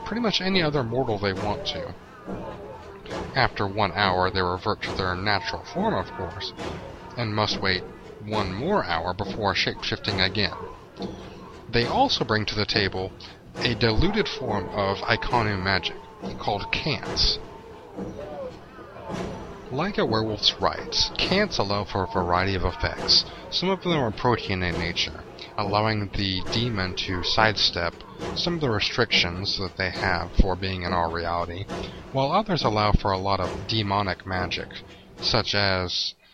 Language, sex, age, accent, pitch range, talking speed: English, male, 30-49, American, 95-110 Hz, 145 wpm